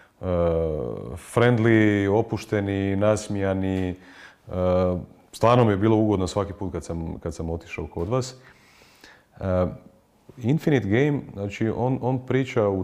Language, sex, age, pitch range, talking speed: Croatian, male, 30-49, 90-110 Hz, 110 wpm